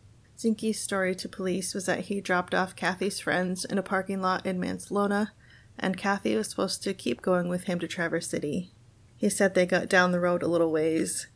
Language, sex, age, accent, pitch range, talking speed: English, female, 30-49, American, 165-190 Hz, 205 wpm